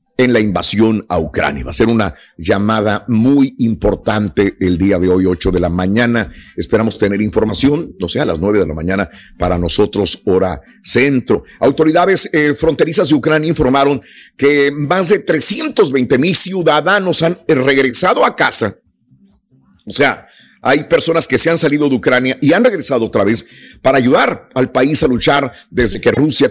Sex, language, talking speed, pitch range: male, Spanish, 170 wpm, 115-160 Hz